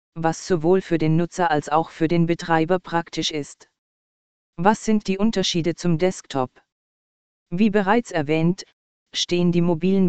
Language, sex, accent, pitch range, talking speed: German, female, German, 165-195 Hz, 145 wpm